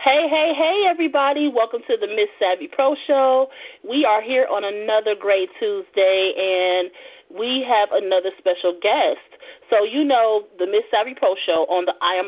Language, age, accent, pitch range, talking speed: English, 30-49, American, 180-280 Hz, 175 wpm